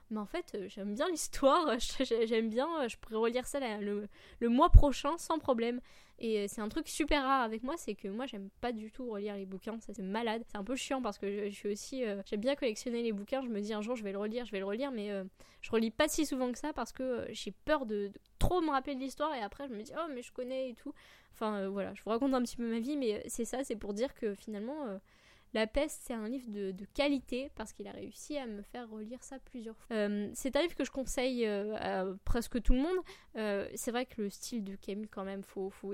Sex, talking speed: female, 275 wpm